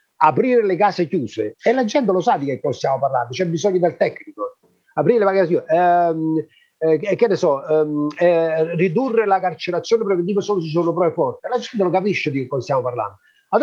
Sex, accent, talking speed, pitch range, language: male, native, 205 wpm, 155-220 Hz, Italian